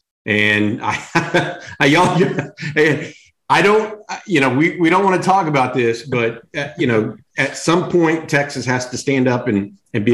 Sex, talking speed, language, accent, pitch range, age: male, 185 wpm, English, American, 110-135 Hz, 50-69